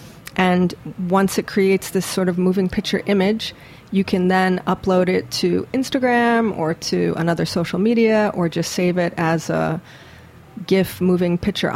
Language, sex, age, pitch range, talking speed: English, female, 30-49, 180-210 Hz, 160 wpm